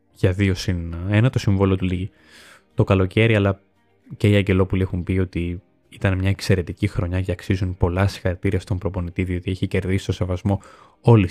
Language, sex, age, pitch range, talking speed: Greek, male, 20-39, 90-110 Hz, 175 wpm